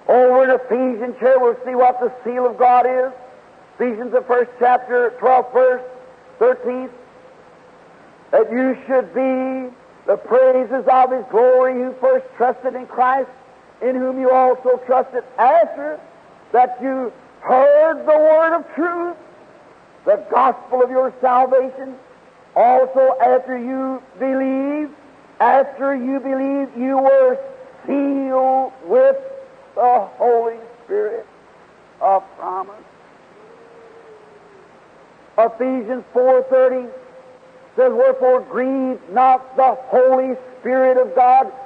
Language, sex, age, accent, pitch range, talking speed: English, male, 50-69, American, 250-290 Hz, 115 wpm